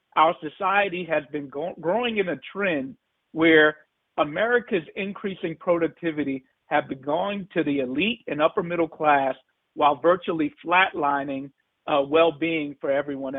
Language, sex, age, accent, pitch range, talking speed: English, male, 50-69, American, 155-210 Hz, 135 wpm